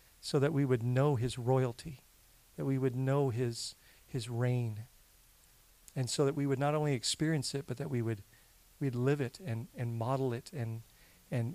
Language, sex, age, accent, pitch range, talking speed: English, male, 40-59, American, 115-145 Hz, 185 wpm